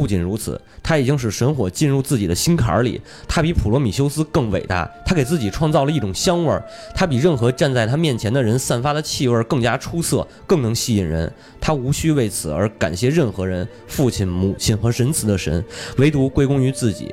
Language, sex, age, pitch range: Chinese, male, 20-39, 100-145 Hz